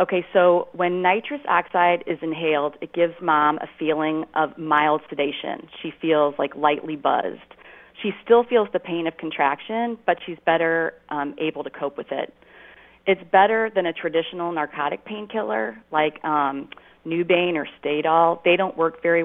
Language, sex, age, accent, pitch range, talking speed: English, female, 30-49, American, 150-185 Hz, 160 wpm